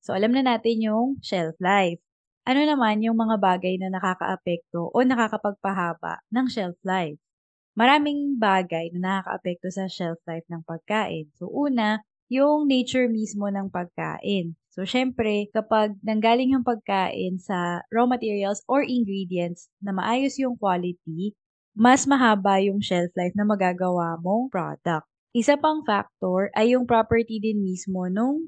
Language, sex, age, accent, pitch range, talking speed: Filipino, female, 20-39, native, 175-220 Hz, 145 wpm